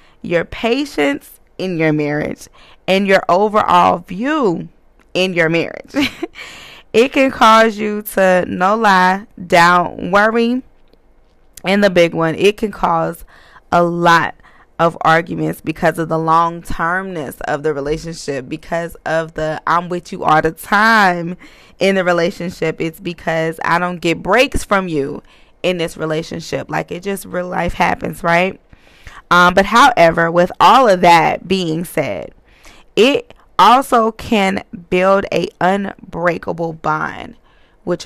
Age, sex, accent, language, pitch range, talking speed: 20-39, female, American, English, 160-195 Hz, 135 wpm